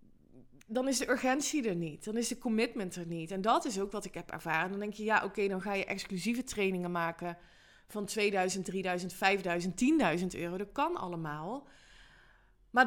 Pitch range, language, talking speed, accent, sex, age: 180-235 Hz, Dutch, 190 wpm, Dutch, female, 20-39